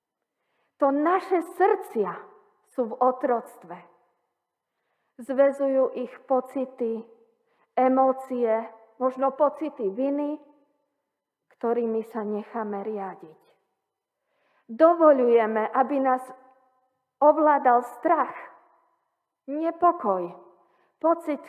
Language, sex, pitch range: Slovak, female, 215-290 Hz